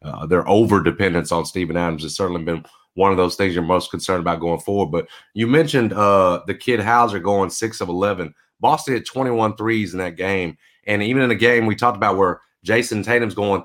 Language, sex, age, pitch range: English, male, 30-49, 100-125 Hz